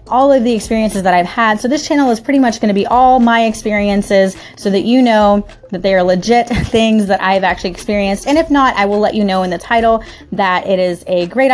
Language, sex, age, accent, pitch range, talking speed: English, female, 30-49, American, 195-255 Hz, 245 wpm